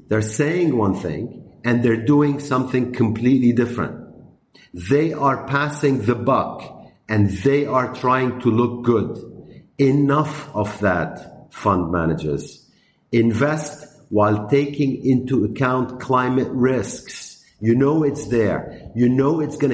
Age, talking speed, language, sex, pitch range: 50-69, 130 wpm, English, male, 100-130 Hz